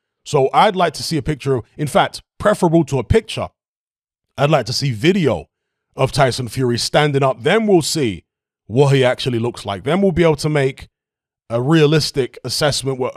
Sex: male